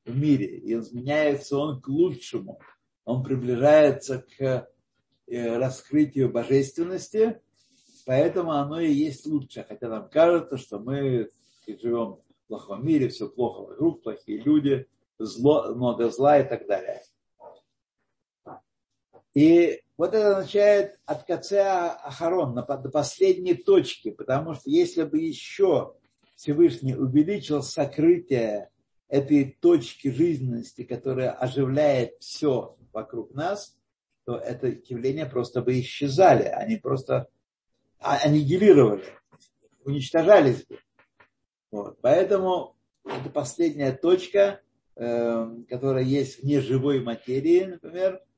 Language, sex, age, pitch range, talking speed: Russian, male, 60-79, 130-175 Hz, 105 wpm